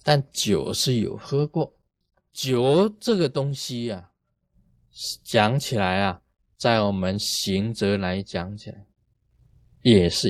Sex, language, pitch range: male, Chinese, 100-150 Hz